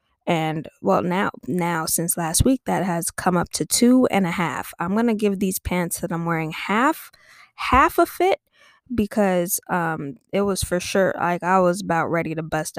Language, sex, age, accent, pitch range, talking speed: English, female, 10-29, American, 160-195 Hz, 195 wpm